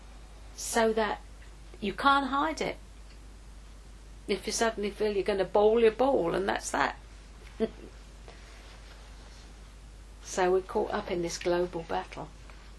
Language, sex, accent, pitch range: English, female, British, 175-225 Hz